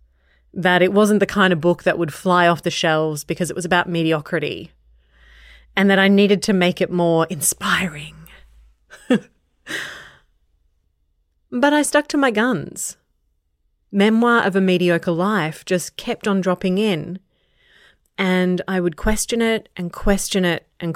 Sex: female